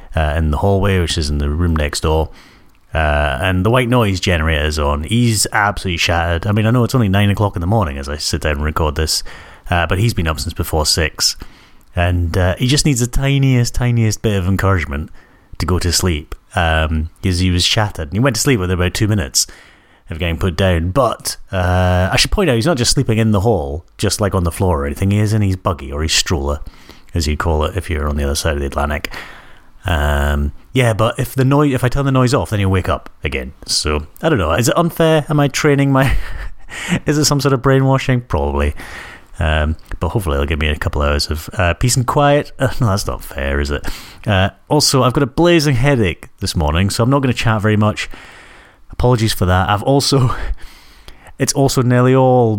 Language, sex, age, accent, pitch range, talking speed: English, male, 30-49, British, 80-120 Hz, 235 wpm